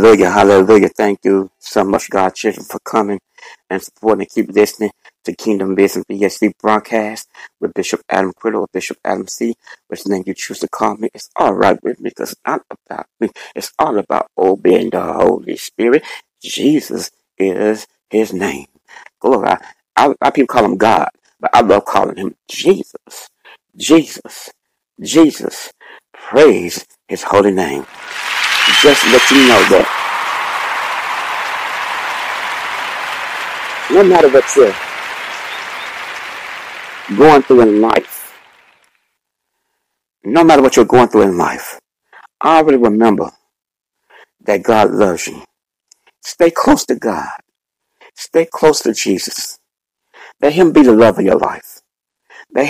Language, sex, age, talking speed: English, male, 60-79, 135 wpm